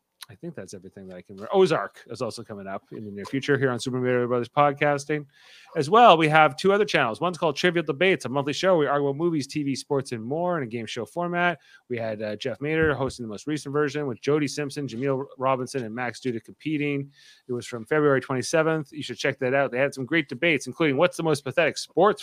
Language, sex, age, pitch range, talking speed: English, male, 30-49, 135-180 Hz, 245 wpm